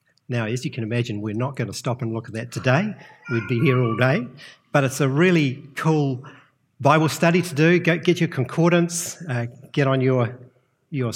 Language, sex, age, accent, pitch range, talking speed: English, male, 50-69, Australian, 125-150 Hz, 200 wpm